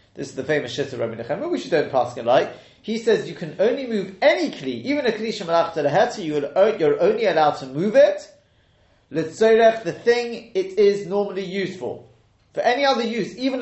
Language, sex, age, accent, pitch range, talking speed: English, male, 30-49, British, 135-205 Hz, 195 wpm